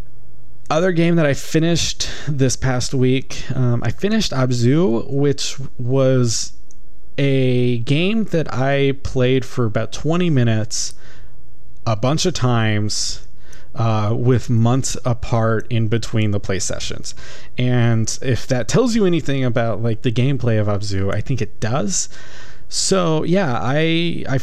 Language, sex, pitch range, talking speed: English, male, 110-135 Hz, 140 wpm